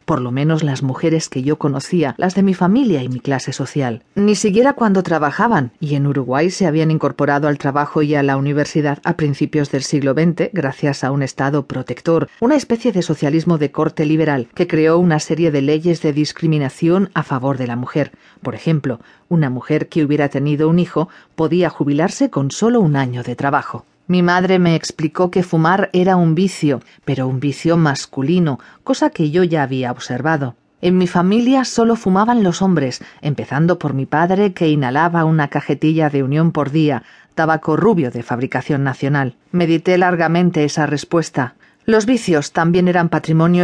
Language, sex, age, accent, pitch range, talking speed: Spanish, female, 40-59, Spanish, 140-175 Hz, 180 wpm